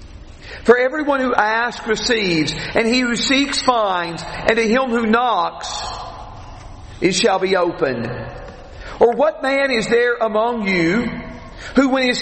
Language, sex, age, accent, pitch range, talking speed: English, male, 50-69, American, 225-280 Hz, 140 wpm